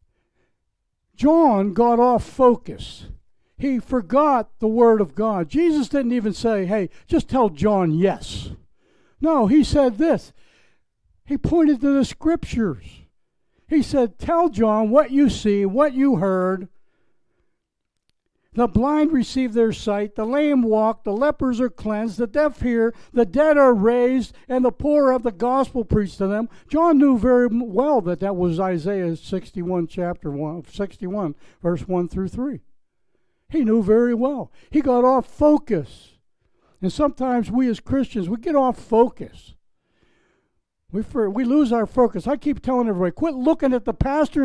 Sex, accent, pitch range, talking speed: male, American, 205-280 Hz, 155 wpm